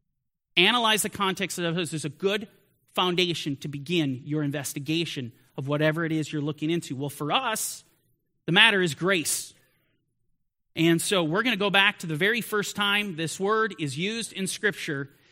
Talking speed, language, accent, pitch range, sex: 175 wpm, English, American, 160-225 Hz, male